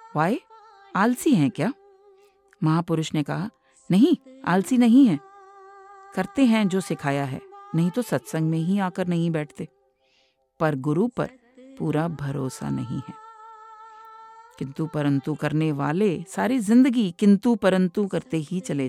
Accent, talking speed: Indian, 135 wpm